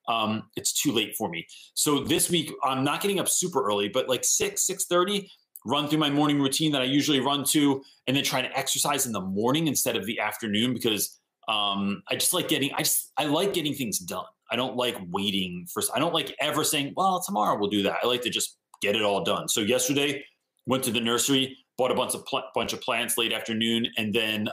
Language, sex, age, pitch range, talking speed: English, male, 30-49, 105-145 Hz, 235 wpm